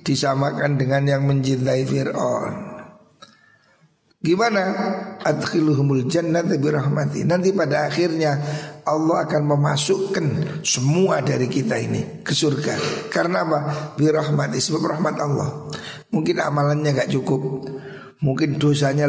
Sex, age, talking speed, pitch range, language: male, 50-69, 105 wpm, 135-170 Hz, Indonesian